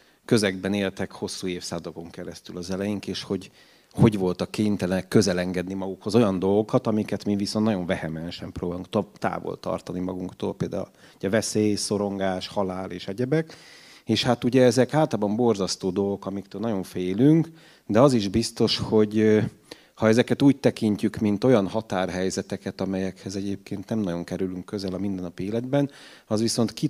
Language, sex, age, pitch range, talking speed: Hungarian, male, 30-49, 95-115 Hz, 150 wpm